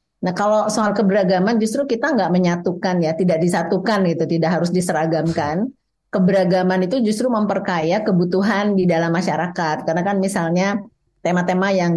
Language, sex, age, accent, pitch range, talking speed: Indonesian, female, 30-49, native, 160-190 Hz, 140 wpm